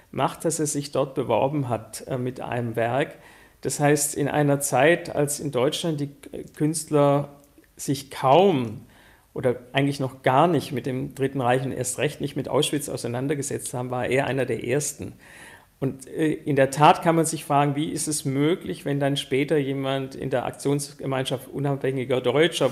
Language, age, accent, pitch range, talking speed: German, 50-69, German, 135-155 Hz, 175 wpm